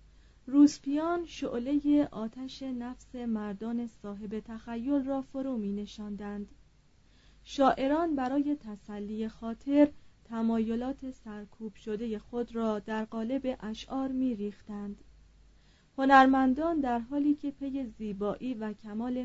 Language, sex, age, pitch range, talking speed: Persian, female, 30-49, 210-260 Hz, 105 wpm